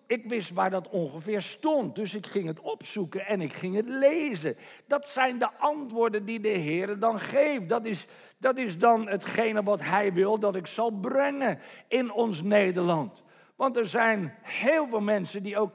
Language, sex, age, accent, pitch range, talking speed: Dutch, male, 50-69, Dutch, 180-240 Hz, 185 wpm